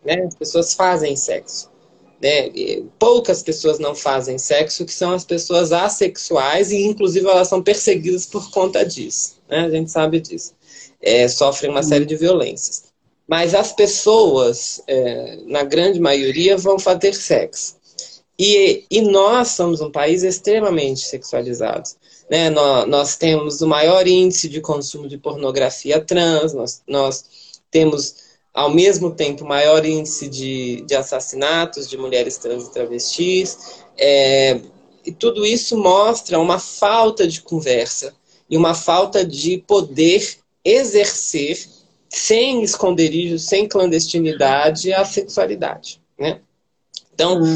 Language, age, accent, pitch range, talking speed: Portuguese, 20-39, Brazilian, 140-195 Hz, 130 wpm